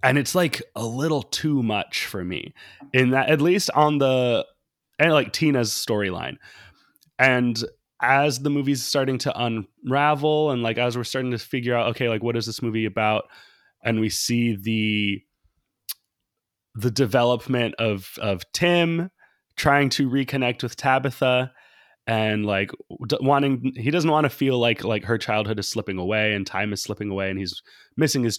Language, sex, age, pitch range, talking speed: English, male, 20-39, 110-140 Hz, 165 wpm